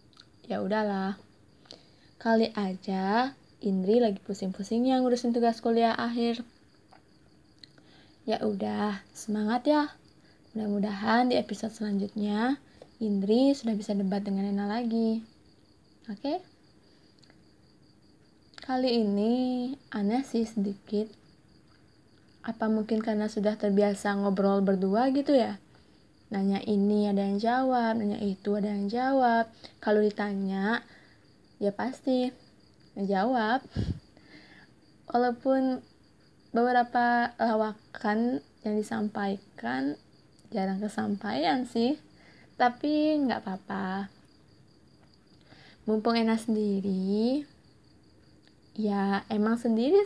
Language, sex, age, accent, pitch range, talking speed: Indonesian, female, 20-39, native, 205-240 Hz, 90 wpm